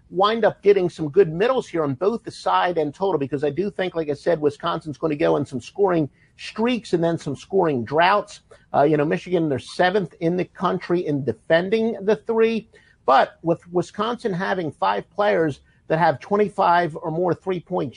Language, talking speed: English, 195 wpm